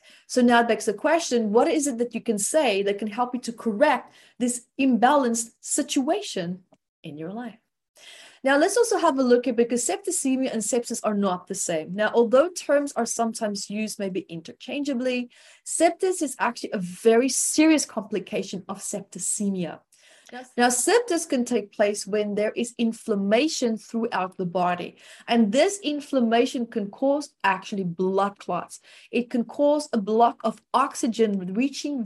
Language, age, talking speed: English, 30-49, 160 wpm